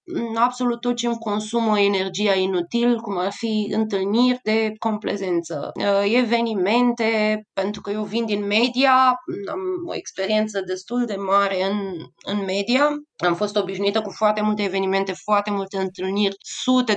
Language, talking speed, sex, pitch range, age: Romanian, 140 wpm, female, 200-250 Hz, 20-39